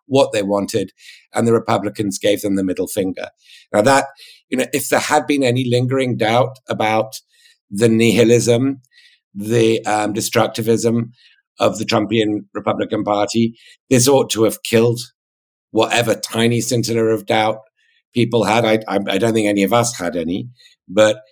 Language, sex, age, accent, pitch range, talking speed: English, male, 60-79, British, 105-130 Hz, 160 wpm